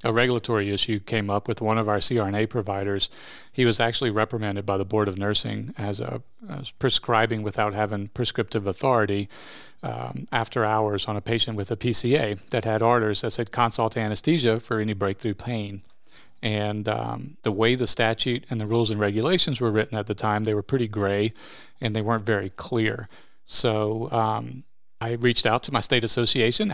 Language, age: English, 40-59